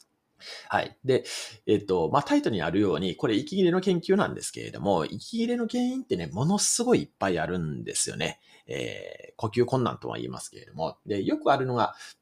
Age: 40-59